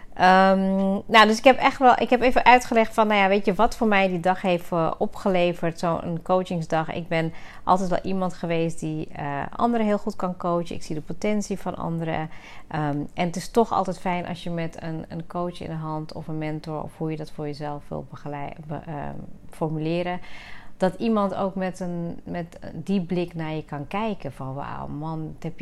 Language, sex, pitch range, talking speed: Dutch, female, 150-185 Hz, 200 wpm